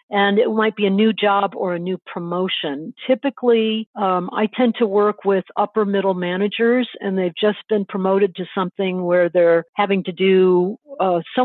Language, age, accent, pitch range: English, 50-69, American, 180-215 Hz